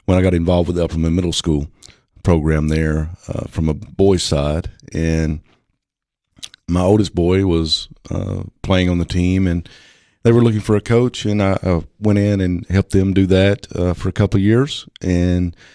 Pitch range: 80-100 Hz